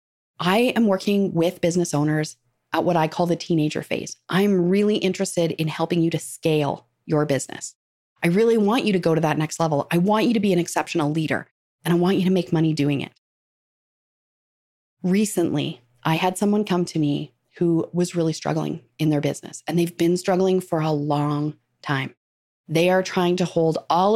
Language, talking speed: English, 195 wpm